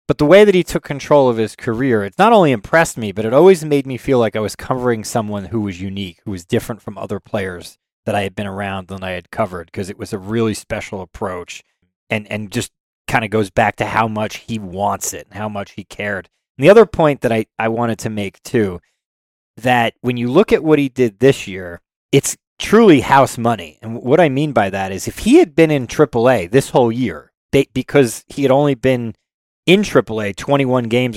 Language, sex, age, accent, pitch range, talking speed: English, male, 30-49, American, 105-135 Hz, 230 wpm